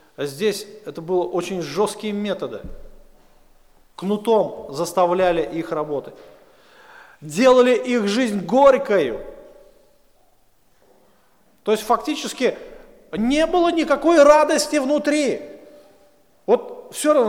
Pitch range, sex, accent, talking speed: 160-255 Hz, male, native, 85 wpm